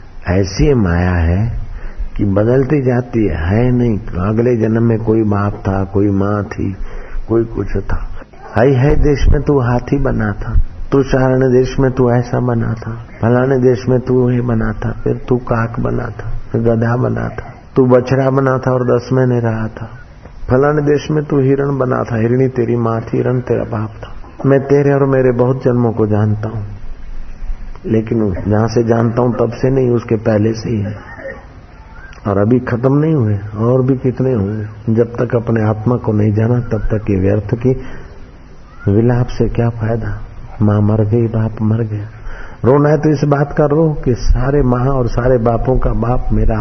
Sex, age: male, 50-69